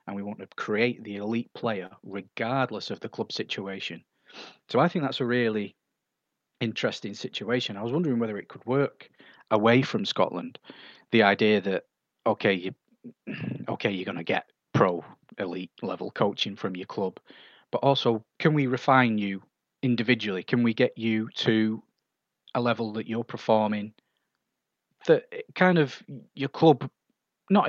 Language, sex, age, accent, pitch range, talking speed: English, male, 30-49, British, 105-125 Hz, 150 wpm